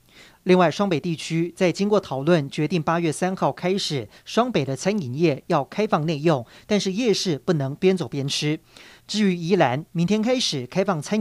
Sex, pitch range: male, 150-195 Hz